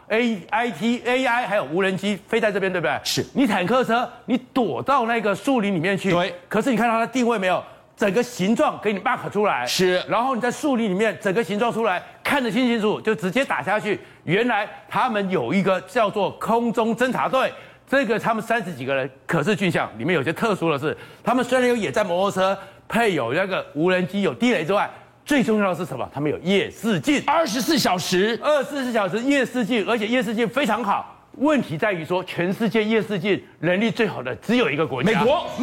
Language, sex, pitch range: Chinese, male, 185-245 Hz